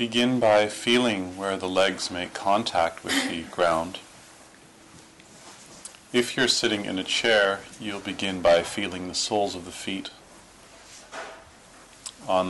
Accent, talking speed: American, 130 wpm